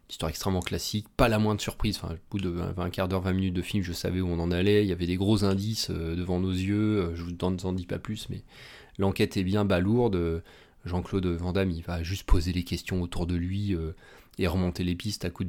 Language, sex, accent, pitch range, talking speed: French, male, French, 95-110 Hz, 235 wpm